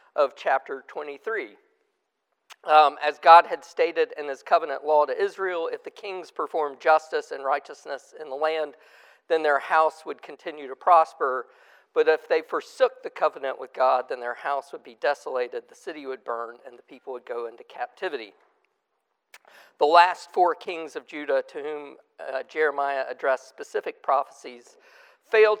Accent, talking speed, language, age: American, 165 wpm, English, 50-69